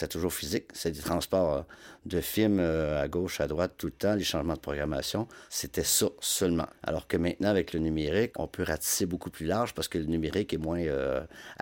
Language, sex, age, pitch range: French, male, 50-69, 80-95 Hz